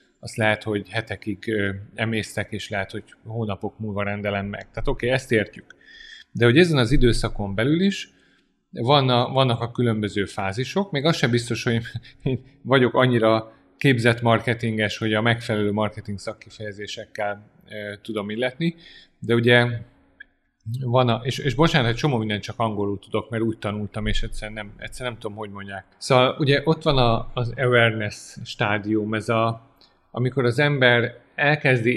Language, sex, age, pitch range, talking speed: Hungarian, male, 30-49, 110-135 Hz, 165 wpm